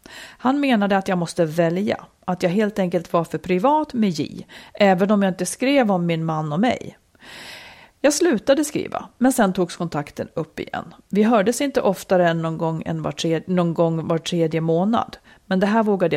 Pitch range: 175-245 Hz